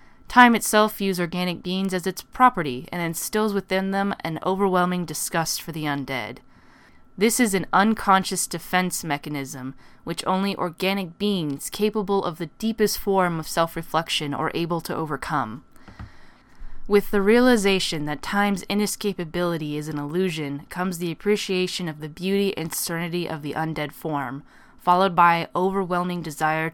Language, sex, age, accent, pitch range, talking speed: English, female, 10-29, American, 155-195 Hz, 145 wpm